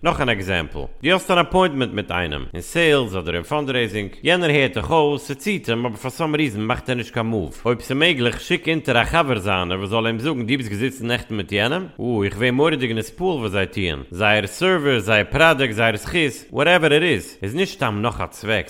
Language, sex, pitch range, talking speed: English, male, 110-150 Hz, 230 wpm